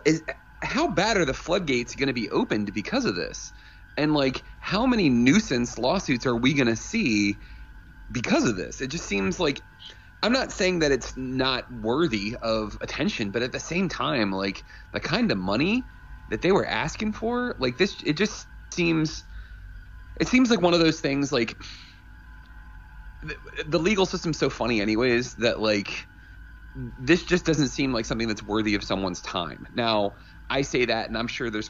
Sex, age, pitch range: male, 30-49, 100-135 Hz